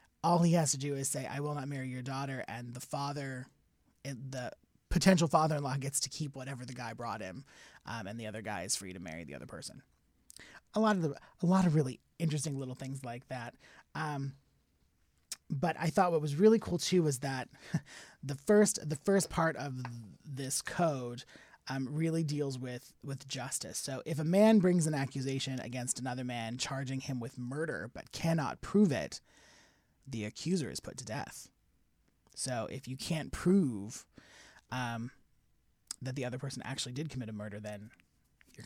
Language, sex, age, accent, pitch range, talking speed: English, male, 30-49, American, 125-160 Hz, 185 wpm